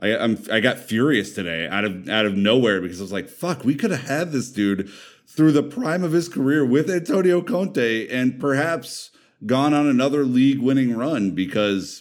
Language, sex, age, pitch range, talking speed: English, male, 30-49, 85-110 Hz, 200 wpm